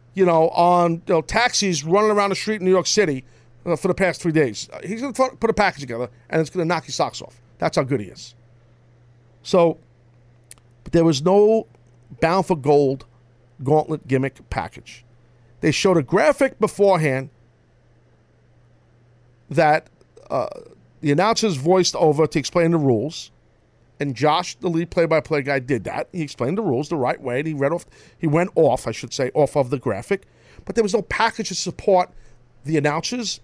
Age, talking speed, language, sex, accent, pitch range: 50-69, 180 wpm, English, male, American, 120-180 Hz